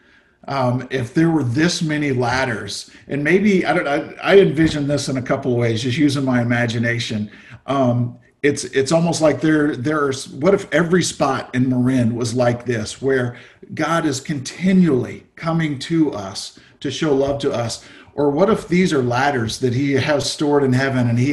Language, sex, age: English, male, 50-69